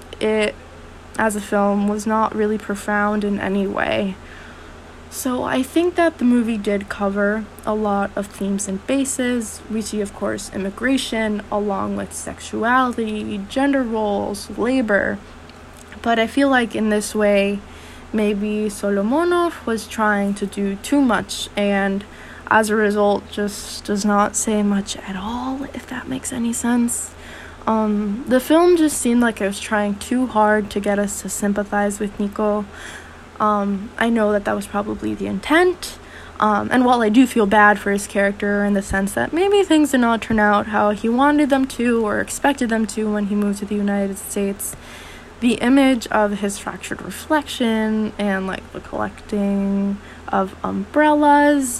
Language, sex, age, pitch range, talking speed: English, female, 20-39, 200-240 Hz, 165 wpm